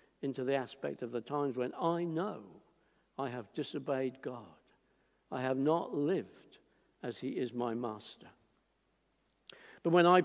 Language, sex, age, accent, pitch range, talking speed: English, male, 60-79, British, 160-230 Hz, 145 wpm